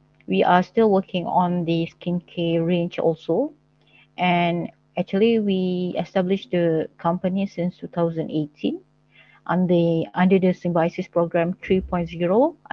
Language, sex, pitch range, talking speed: English, female, 170-190 Hz, 110 wpm